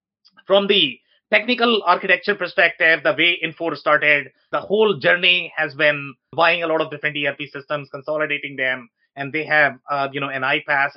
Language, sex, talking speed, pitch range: English, male, 170 wpm, 145-170 Hz